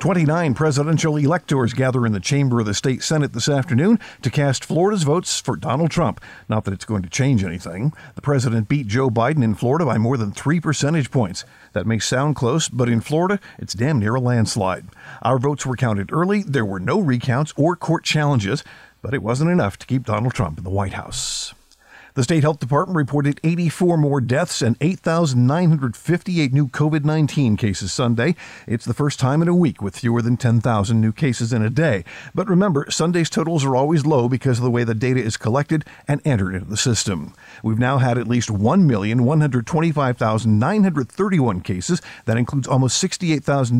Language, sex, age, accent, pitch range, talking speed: English, male, 50-69, American, 115-155 Hz, 190 wpm